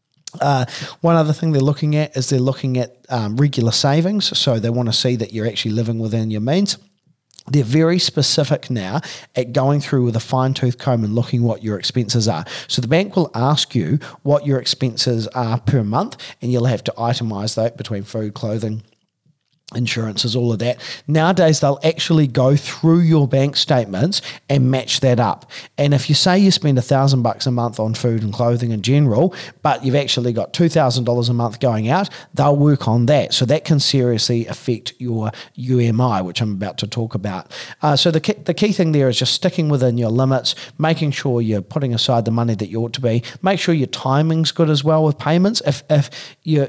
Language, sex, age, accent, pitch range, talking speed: English, male, 40-59, Australian, 120-145 Hz, 210 wpm